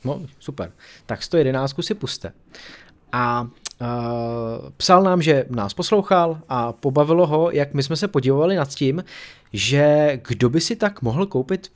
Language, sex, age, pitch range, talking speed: Czech, male, 30-49, 120-165 Hz, 150 wpm